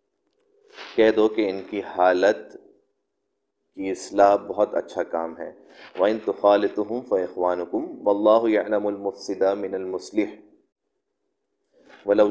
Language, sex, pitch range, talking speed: Urdu, male, 95-110 Hz, 105 wpm